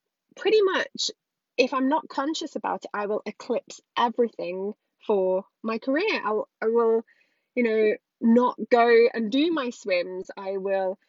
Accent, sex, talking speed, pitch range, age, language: British, female, 150 wpm, 200-250 Hz, 20-39, English